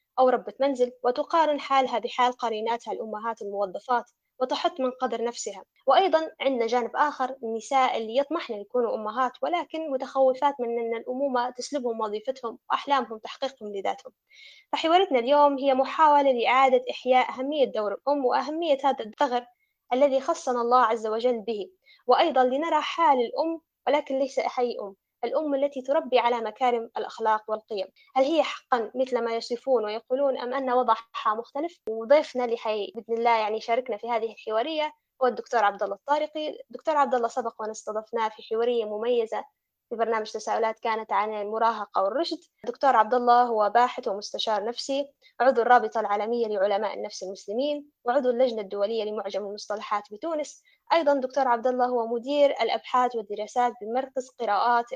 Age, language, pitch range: 20-39, Arabic, 225-280 Hz